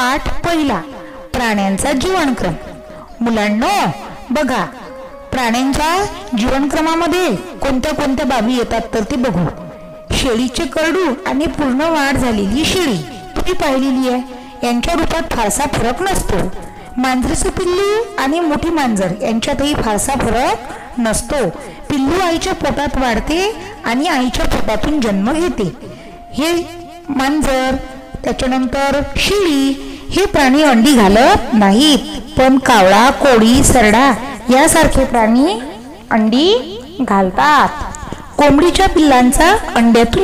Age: 50-69